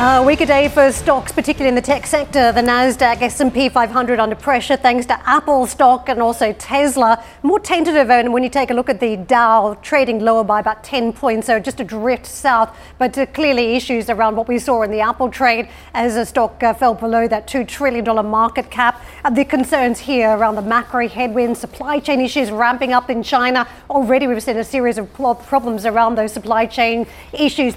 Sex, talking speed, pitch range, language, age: female, 210 wpm, 230-260 Hz, English, 40-59